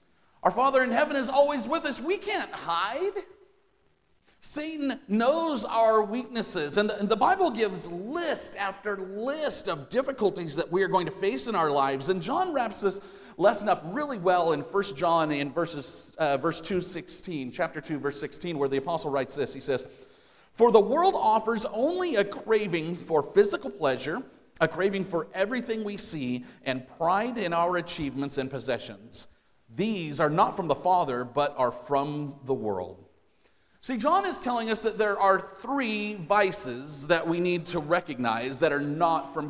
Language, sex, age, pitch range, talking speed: English, male, 40-59, 140-225 Hz, 175 wpm